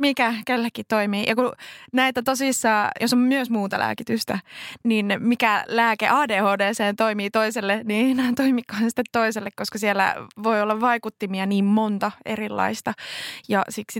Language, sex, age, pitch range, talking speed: Finnish, female, 20-39, 205-255 Hz, 135 wpm